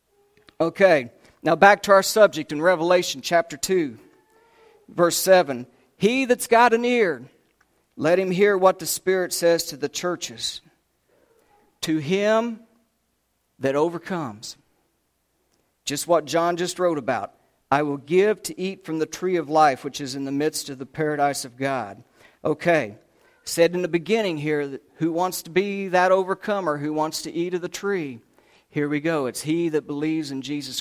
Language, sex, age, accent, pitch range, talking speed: English, male, 50-69, American, 140-180 Hz, 165 wpm